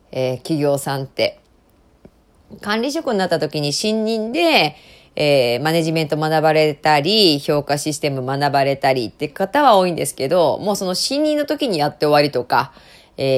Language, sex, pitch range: Japanese, female, 155-255 Hz